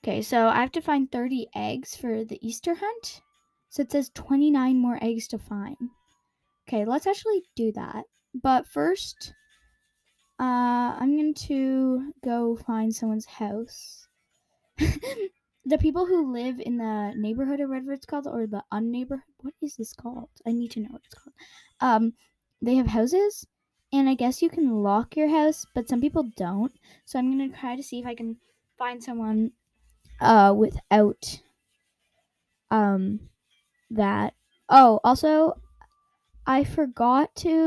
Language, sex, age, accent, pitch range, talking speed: English, female, 10-29, American, 225-290 Hz, 155 wpm